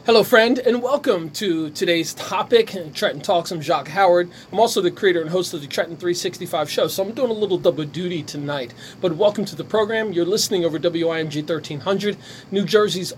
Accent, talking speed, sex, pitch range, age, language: American, 200 wpm, male, 160-195 Hz, 30-49, English